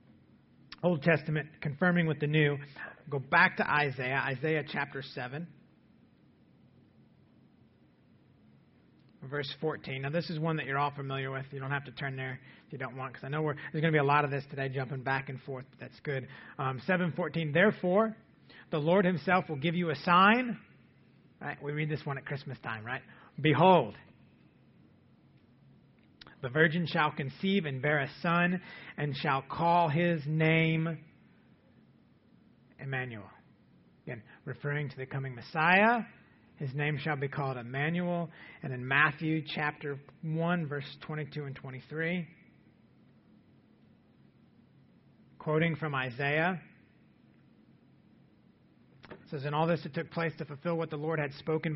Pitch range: 135-165 Hz